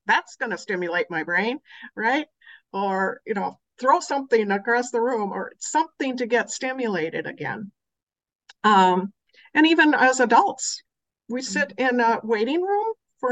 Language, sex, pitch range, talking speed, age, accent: English, female, 200-275 Hz, 150 wpm, 50-69, American